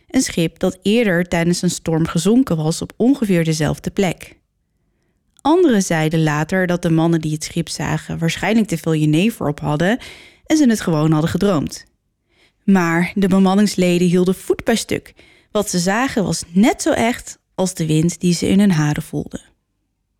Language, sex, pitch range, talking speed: Dutch, female, 155-200 Hz, 170 wpm